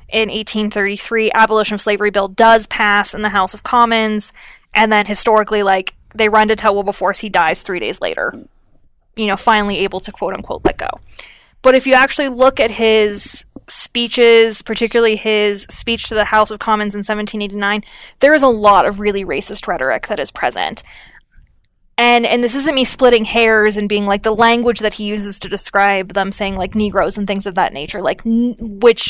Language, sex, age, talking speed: English, female, 10-29, 195 wpm